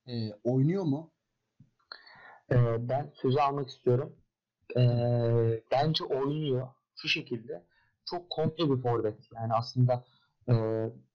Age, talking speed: 40-59, 100 wpm